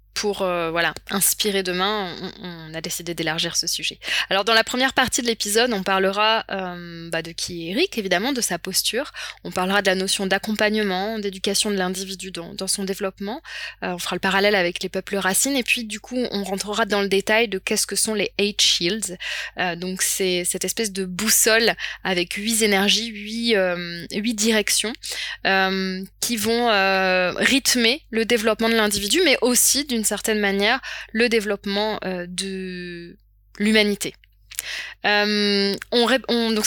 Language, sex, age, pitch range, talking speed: French, female, 20-39, 190-230 Hz, 170 wpm